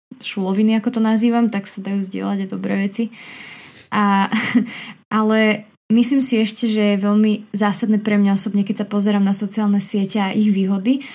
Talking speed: 170 wpm